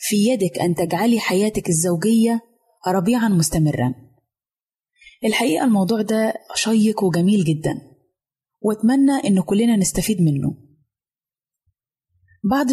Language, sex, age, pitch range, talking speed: Arabic, female, 20-39, 175-235 Hz, 95 wpm